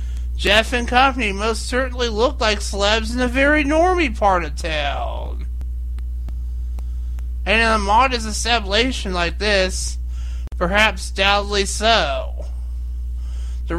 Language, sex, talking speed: English, male, 115 wpm